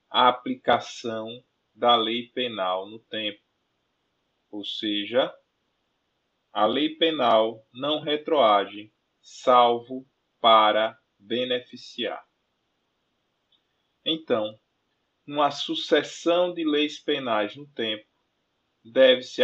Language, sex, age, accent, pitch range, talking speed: Portuguese, male, 20-39, Brazilian, 110-150 Hz, 80 wpm